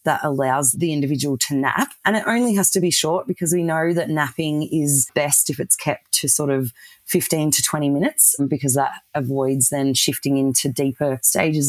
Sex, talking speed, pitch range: female, 195 wpm, 135-170 Hz